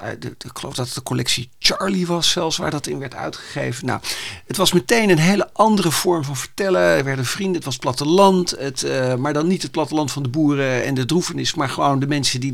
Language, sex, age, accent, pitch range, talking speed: Dutch, male, 50-69, Dutch, 130-180 Hz, 245 wpm